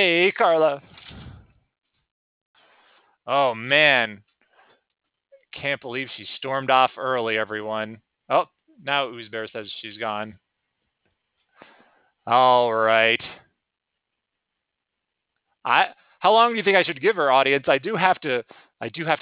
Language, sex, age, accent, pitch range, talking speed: English, male, 30-49, American, 115-165 Hz, 115 wpm